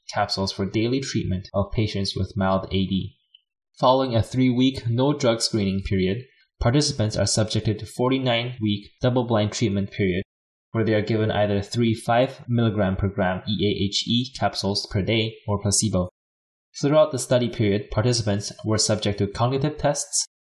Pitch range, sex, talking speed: 100-120 Hz, male, 140 wpm